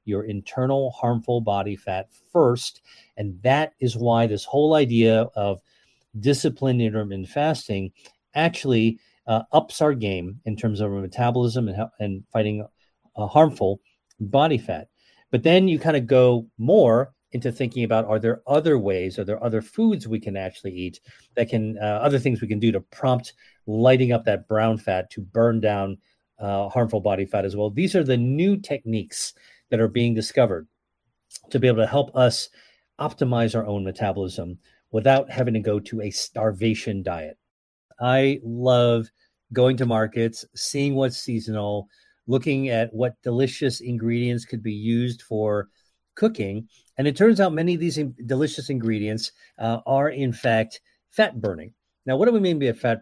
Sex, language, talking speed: male, English, 165 wpm